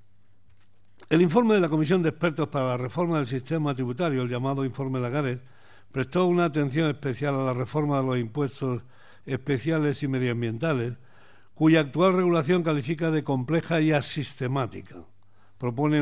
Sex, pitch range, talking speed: male, 125-155 Hz, 145 wpm